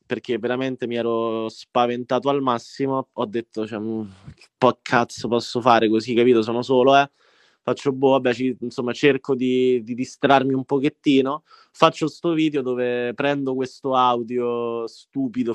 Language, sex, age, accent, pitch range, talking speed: Italian, male, 20-39, native, 120-140 Hz, 150 wpm